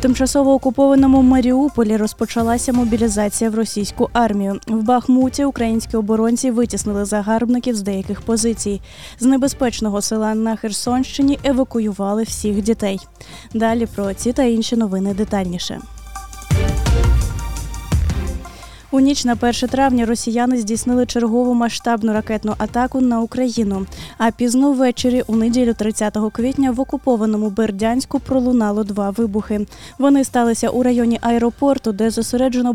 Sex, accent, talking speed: female, native, 120 wpm